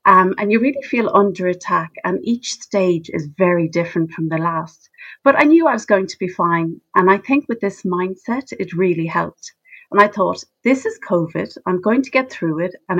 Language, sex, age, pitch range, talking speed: English, female, 40-59, 170-225 Hz, 215 wpm